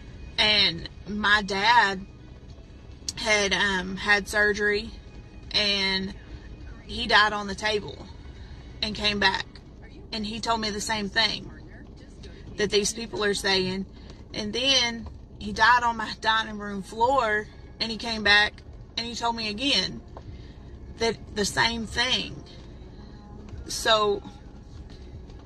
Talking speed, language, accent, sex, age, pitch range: 120 wpm, English, American, female, 30-49, 185-220 Hz